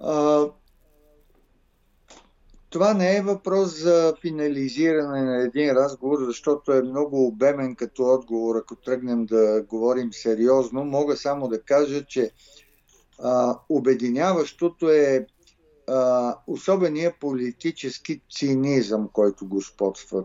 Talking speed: 105 wpm